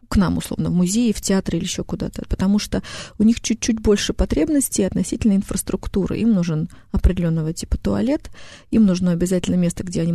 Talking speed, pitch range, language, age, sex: 175 wpm, 170-200 Hz, Russian, 30-49, female